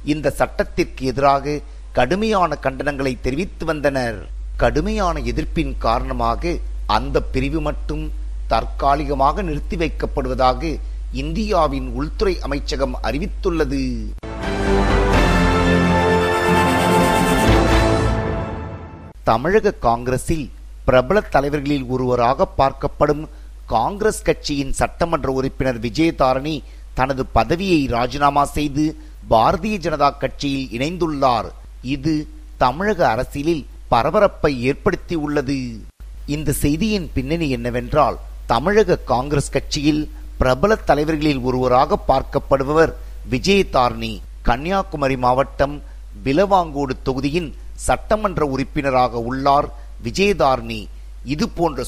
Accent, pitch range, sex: native, 120-155 Hz, male